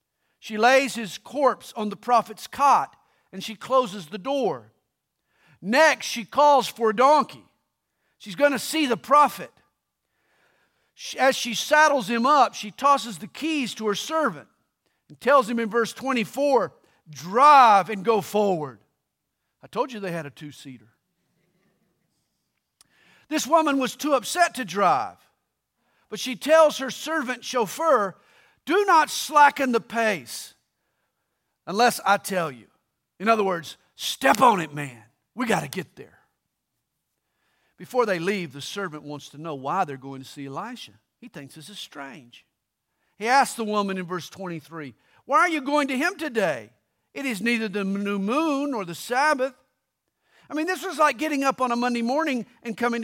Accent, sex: American, male